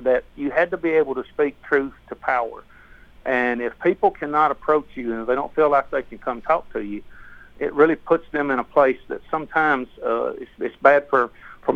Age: 50-69